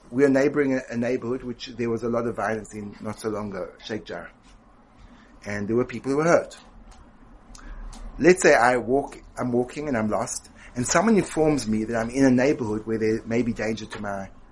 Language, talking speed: English, 210 wpm